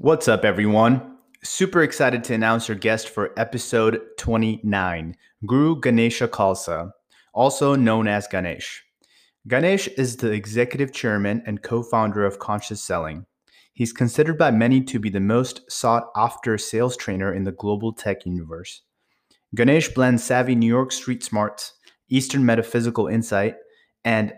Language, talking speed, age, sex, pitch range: English, 140 wpm, 30-49, male, 105-120 Hz